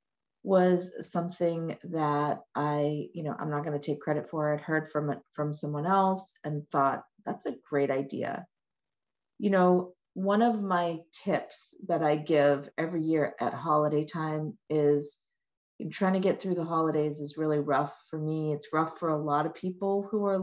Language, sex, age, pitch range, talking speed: English, female, 40-59, 150-185 Hz, 175 wpm